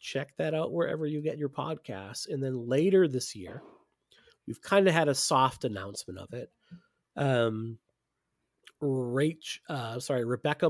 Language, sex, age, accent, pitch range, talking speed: English, male, 40-59, American, 110-135 Hz, 150 wpm